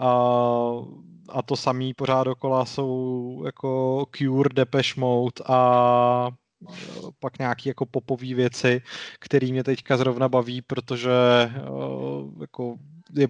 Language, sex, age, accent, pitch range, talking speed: Czech, male, 30-49, native, 125-145 Hz, 110 wpm